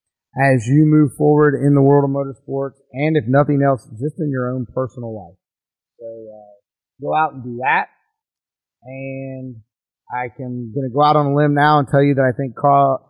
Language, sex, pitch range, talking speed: English, male, 120-145 Hz, 195 wpm